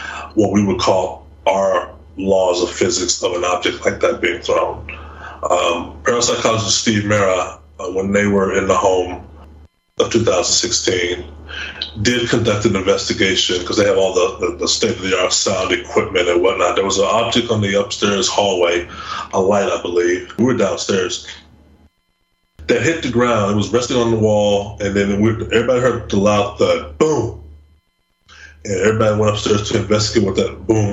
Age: 30-49